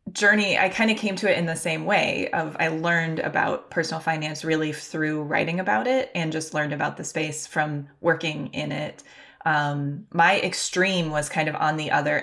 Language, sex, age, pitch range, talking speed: English, female, 20-39, 155-170 Hz, 200 wpm